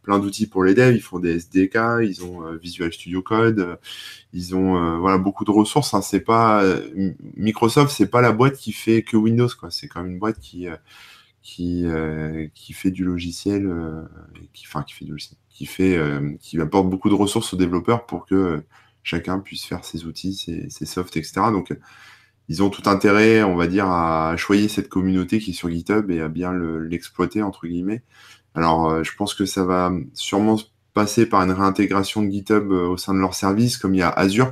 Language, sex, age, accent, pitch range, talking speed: French, male, 20-39, French, 85-105 Hz, 180 wpm